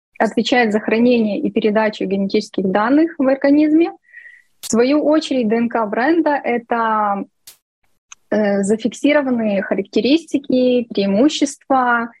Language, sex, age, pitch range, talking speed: Russian, female, 20-39, 215-265 Hz, 90 wpm